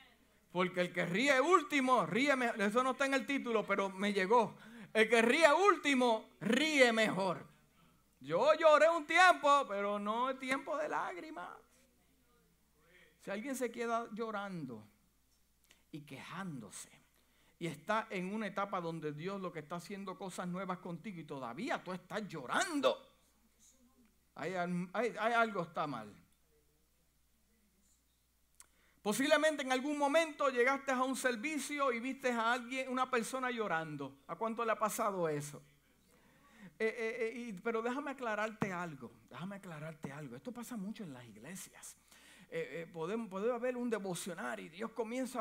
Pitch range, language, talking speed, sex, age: 190-255 Hz, Spanish, 145 wpm, male, 50-69